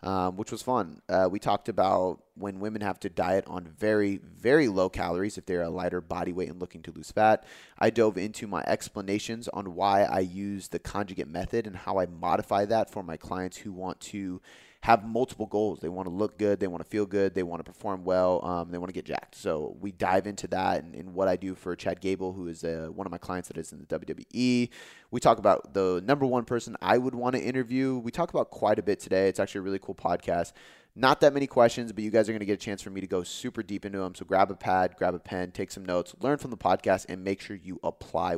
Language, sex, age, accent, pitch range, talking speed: English, male, 20-39, American, 95-115 Hz, 260 wpm